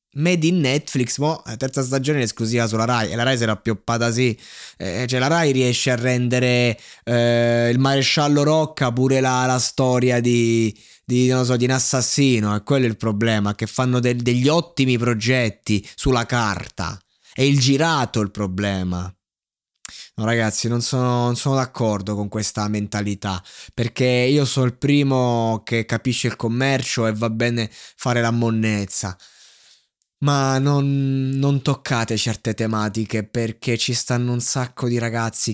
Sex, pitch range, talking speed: male, 110-130 Hz, 160 wpm